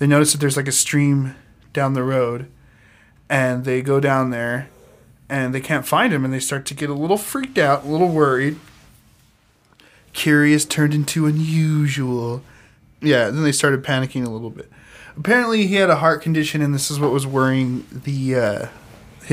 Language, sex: English, male